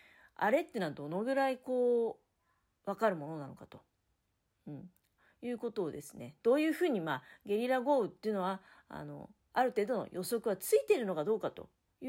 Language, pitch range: Japanese, 190-320 Hz